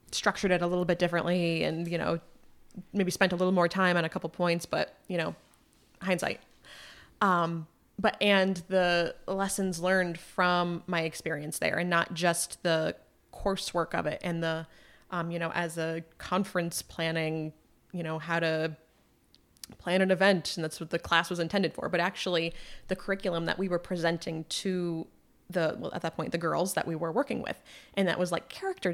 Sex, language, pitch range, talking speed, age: female, English, 165-190 Hz, 185 wpm, 20-39